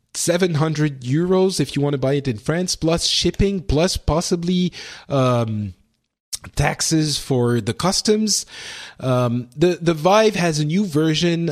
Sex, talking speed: male, 140 wpm